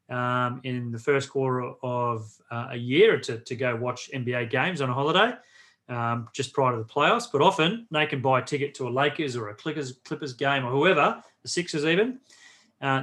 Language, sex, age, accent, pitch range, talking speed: English, male, 30-49, Australian, 125-150 Hz, 205 wpm